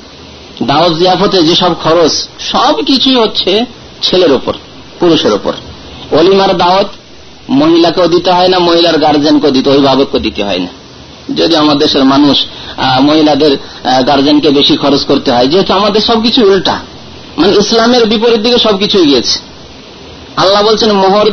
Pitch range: 145-210 Hz